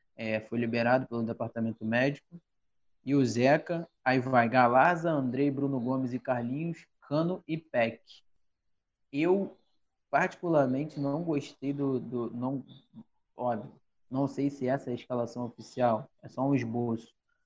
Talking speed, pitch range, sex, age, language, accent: 130 wpm, 120-145 Hz, male, 20-39, Portuguese, Brazilian